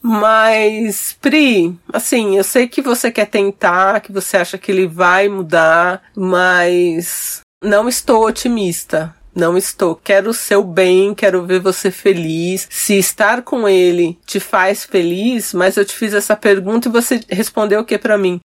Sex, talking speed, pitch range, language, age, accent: female, 165 wpm, 185-245 Hz, Portuguese, 40-59, Brazilian